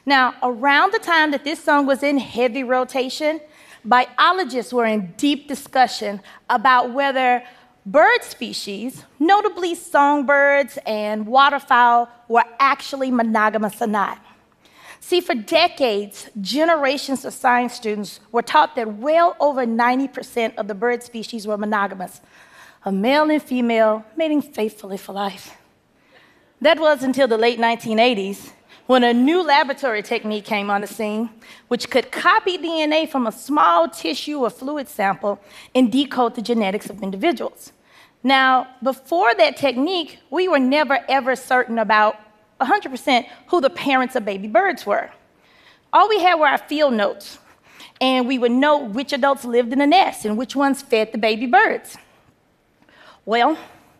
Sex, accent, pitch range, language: female, American, 230-295 Hz, Korean